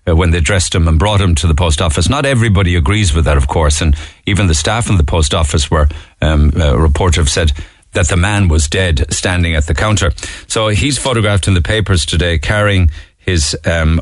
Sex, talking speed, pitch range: male, 215 wpm, 85-105 Hz